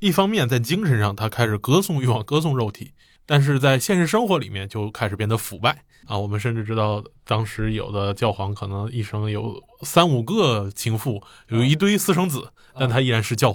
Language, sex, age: Chinese, male, 20-39